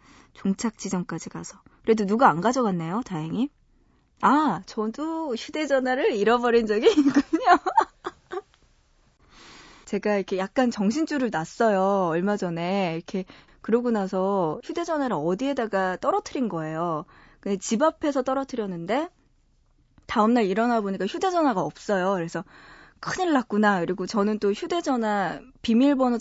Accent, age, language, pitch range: native, 20-39, Korean, 185-265 Hz